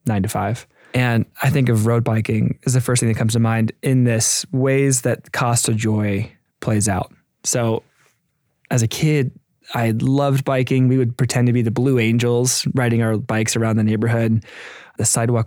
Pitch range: 110-130 Hz